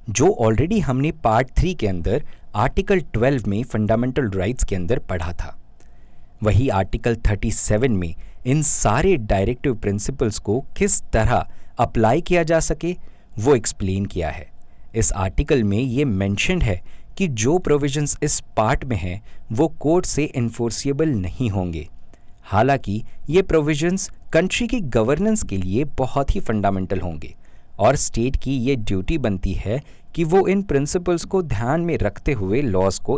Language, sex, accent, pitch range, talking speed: Hindi, male, native, 95-145 Hz, 150 wpm